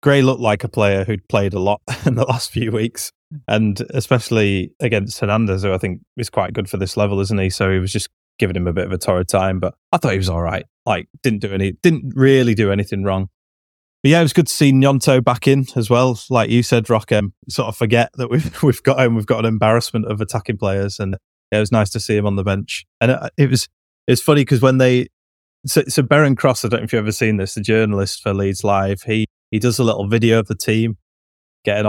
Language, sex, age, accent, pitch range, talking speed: English, male, 20-39, British, 100-120 Hz, 250 wpm